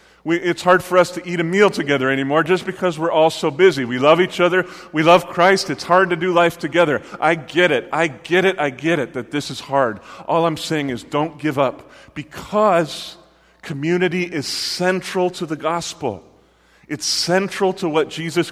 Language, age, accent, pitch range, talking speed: English, 40-59, American, 130-160 Hz, 200 wpm